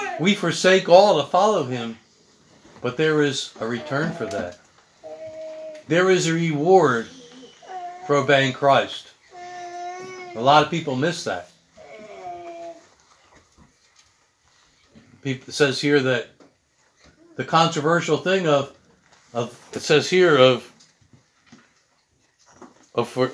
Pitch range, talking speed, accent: 140-185 Hz, 105 wpm, American